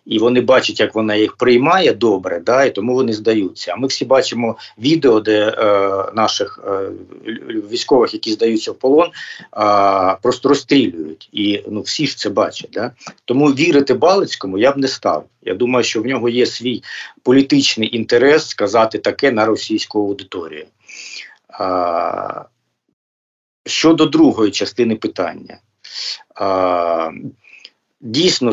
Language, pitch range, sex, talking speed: Ukrainian, 100-140 Hz, male, 135 wpm